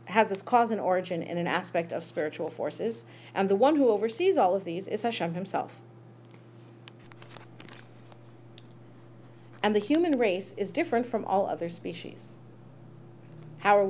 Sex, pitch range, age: female, 135-220 Hz, 40-59